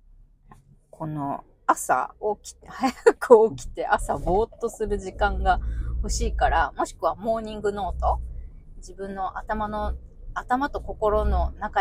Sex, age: female, 20-39